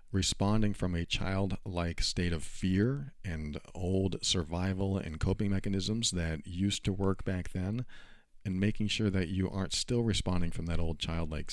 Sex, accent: male, American